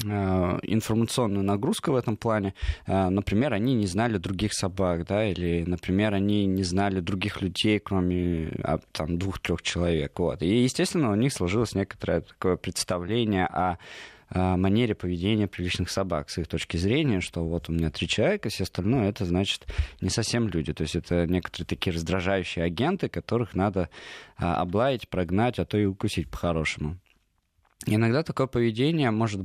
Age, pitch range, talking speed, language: 20-39, 85-105 Hz, 150 wpm, Russian